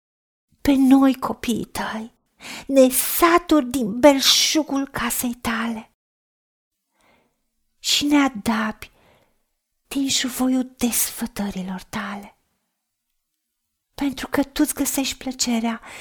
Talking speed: 80 wpm